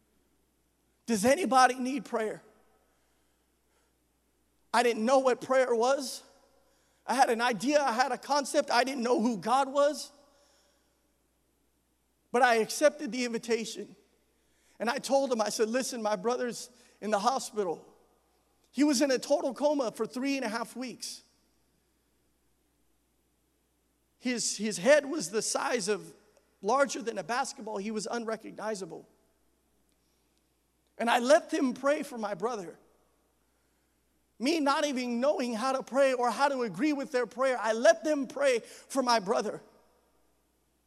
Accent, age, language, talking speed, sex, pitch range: American, 40-59, English, 140 wpm, male, 220-275 Hz